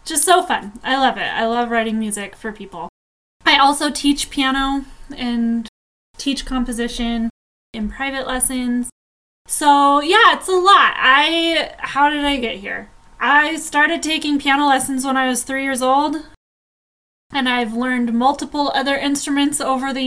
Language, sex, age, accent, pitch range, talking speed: English, female, 10-29, American, 235-275 Hz, 155 wpm